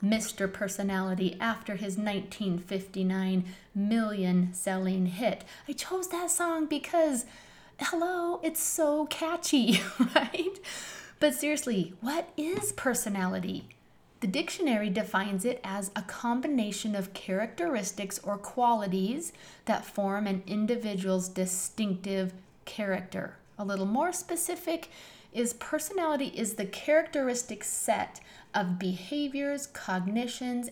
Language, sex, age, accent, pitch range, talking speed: English, female, 30-49, American, 195-285 Hz, 105 wpm